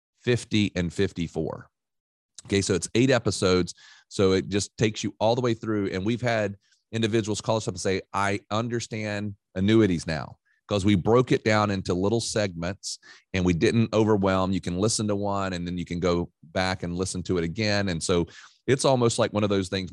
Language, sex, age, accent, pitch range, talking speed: English, male, 30-49, American, 90-105 Hz, 200 wpm